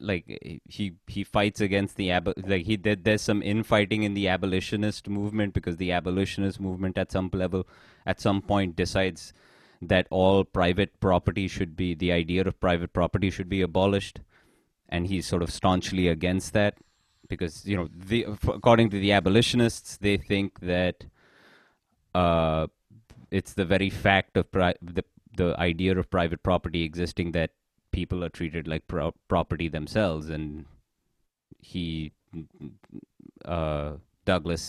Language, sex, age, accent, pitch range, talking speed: English, male, 30-49, Indian, 85-100 Hz, 150 wpm